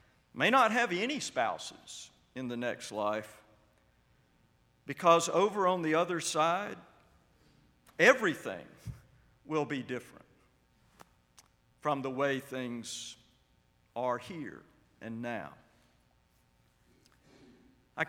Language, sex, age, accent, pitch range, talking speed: English, male, 50-69, American, 125-155 Hz, 95 wpm